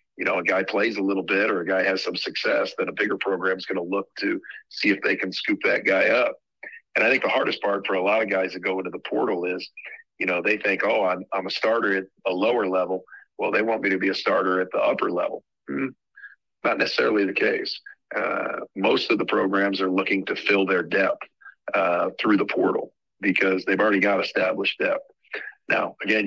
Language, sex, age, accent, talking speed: English, male, 40-59, American, 230 wpm